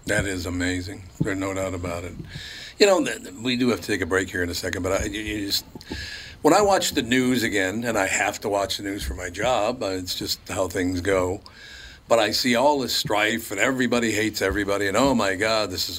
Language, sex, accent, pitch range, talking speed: English, male, American, 95-110 Hz, 220 wpm